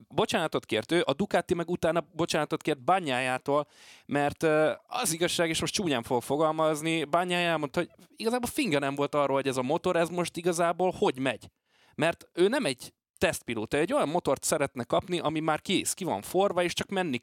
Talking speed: 190 wpm